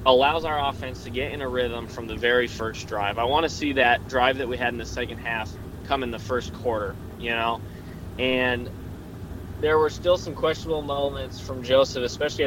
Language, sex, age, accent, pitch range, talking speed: English, male, 20-39, American, 110-145 Hz, 205 wpm